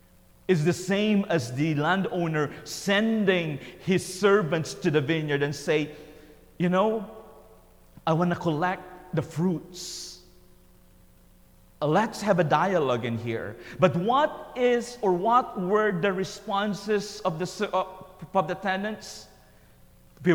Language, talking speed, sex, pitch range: English, 125 wpm, male, 140-205 Hz